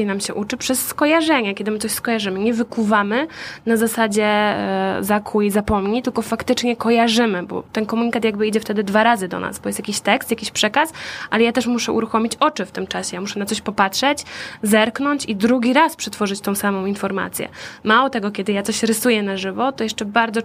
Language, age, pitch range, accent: Polish, 10-29, 210-245 Hz, native